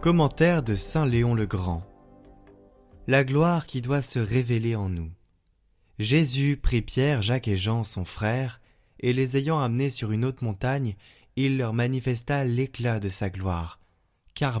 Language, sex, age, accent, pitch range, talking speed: French, male, 20-39, French, 105-130 Hz, 155 wpm